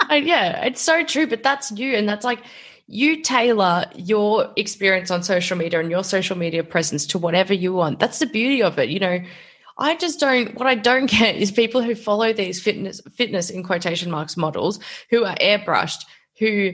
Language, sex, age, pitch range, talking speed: English, female, 10-29, 175-225 Hz, 195 wpm